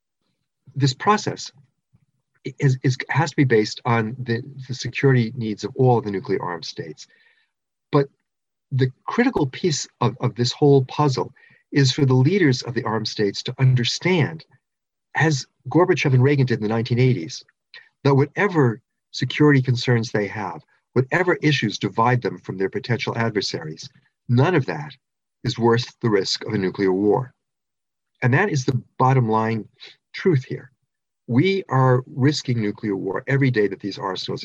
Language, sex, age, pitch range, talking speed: English, male, 50-69, 115-140 Hz, 155 wpm